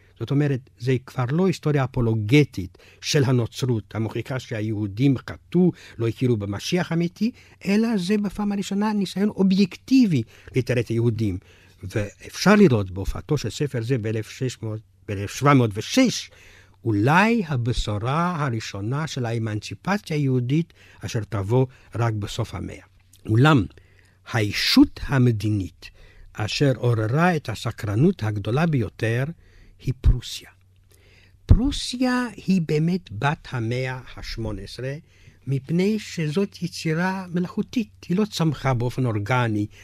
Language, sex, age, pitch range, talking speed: Hebrew, male, 60-79, 100-150 Hz, 105 wpm